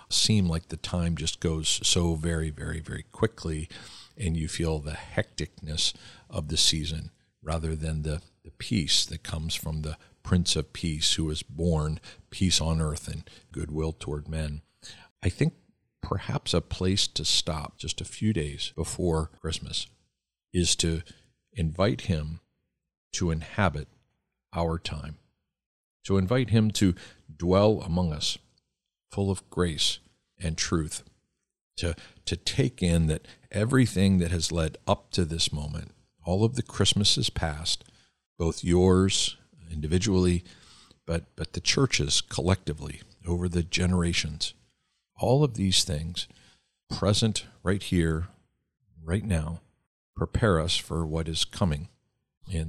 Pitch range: 80-95 Hz